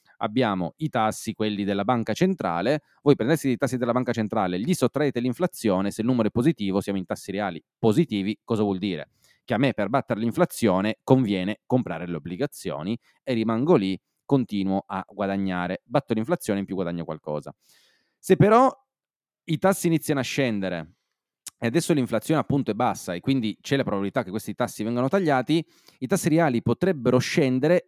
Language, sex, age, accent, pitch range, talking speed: Italian, male, 30-49, native, 95-140 Hz, 170 wpm